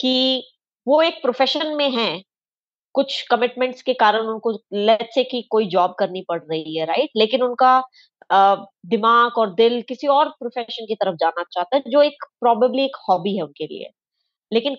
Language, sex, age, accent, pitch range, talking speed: Hindi, female, 20-39, native, 195-255 Hz, 180 wpm